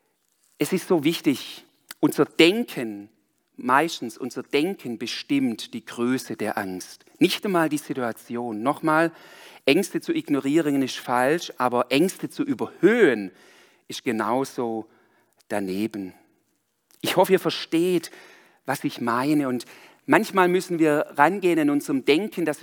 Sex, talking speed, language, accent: male, 125 wpm, German, German